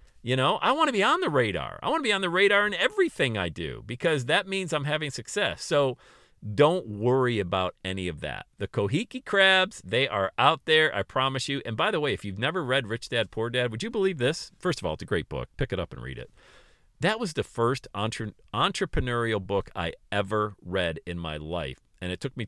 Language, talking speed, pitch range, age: English, 240 wpm, 95-135 Hz, 40-59